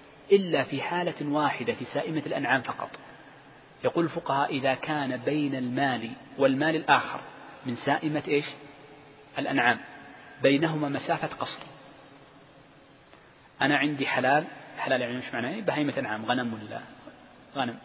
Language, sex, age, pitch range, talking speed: Arabic, male, 40-59, 135-155 Hz, 120 wpm